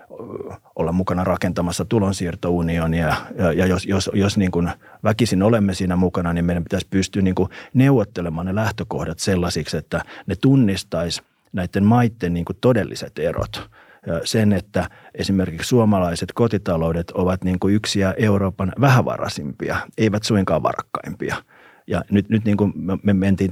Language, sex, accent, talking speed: Finnish, male, native, 135 wpm